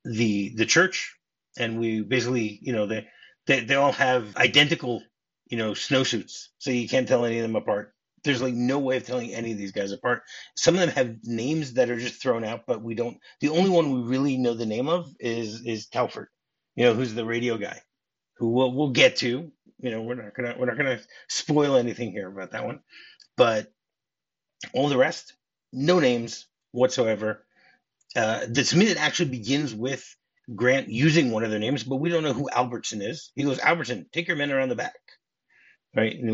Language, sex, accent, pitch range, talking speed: English, male, American, 115-145 Hz, 205 wpm